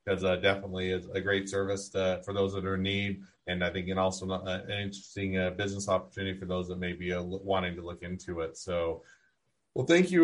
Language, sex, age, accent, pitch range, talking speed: English, male, 30-49, American, 95-120 Hz, 235 wpm